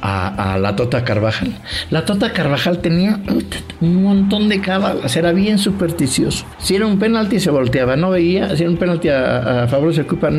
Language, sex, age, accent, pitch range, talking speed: English, male, 60-79, Mexican, 125-170 Hz, 190 wpm